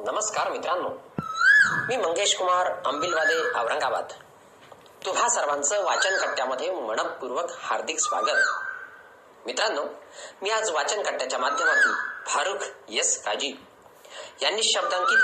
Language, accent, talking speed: Marathi, native, 65 wpm